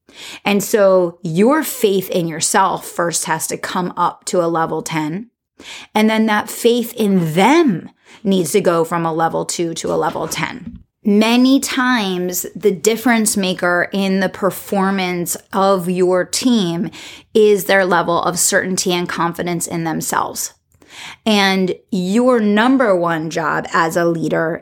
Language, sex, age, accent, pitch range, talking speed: English, female, 30-49, American, 175-210 Hz, 145 wpm